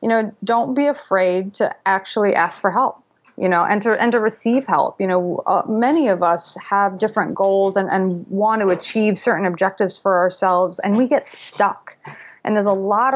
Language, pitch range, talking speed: English, 185-225 Hz, 200 wpm